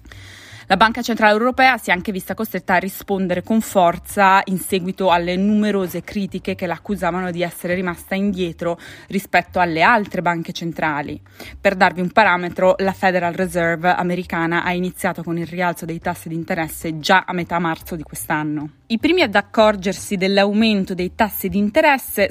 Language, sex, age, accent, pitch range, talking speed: Italian, female, 20-39, native, 170-210 Hz, 165 wpm